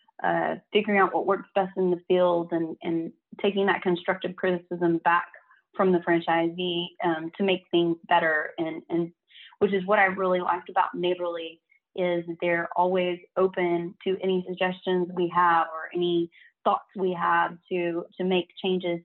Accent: American